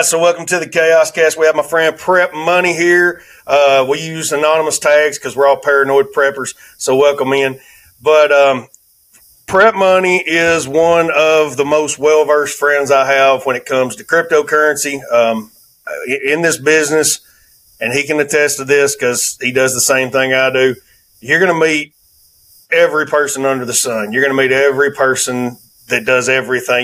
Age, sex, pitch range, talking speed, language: 40-59, male, 130-160 Hz, 180 wpm, English